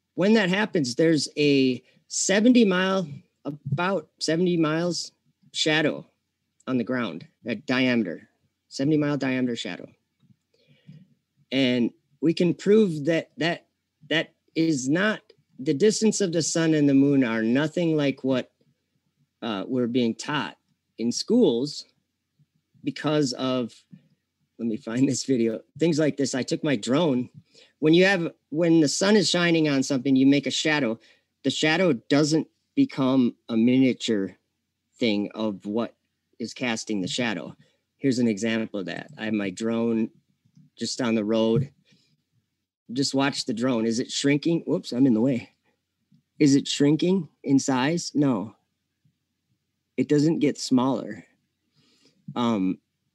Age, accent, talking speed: 40-59, American, 140 wpm